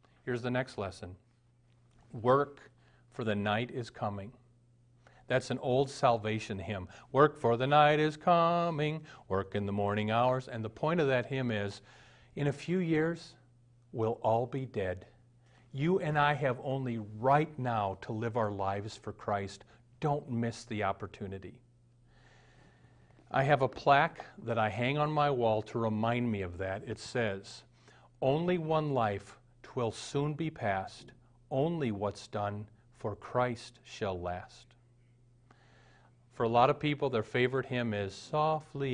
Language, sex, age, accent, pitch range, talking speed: English, male, 50-69, American, 110-135 Hz, 155 wpm